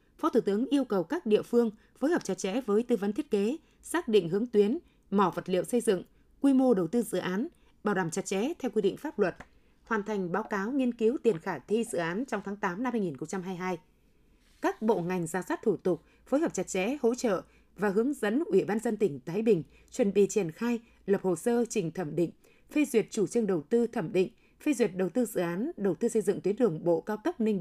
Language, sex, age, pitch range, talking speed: Vietnamese, female, 20-39, 190-245 Hz, 245 wpm